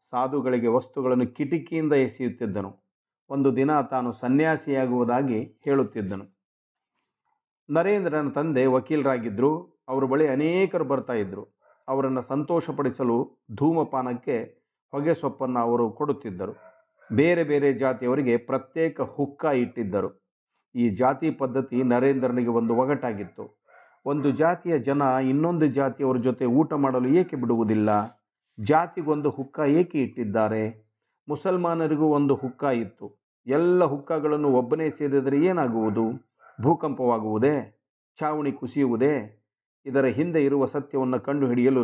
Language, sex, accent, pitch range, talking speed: Kannada, male, native, 125-145 Hz, 95 wpm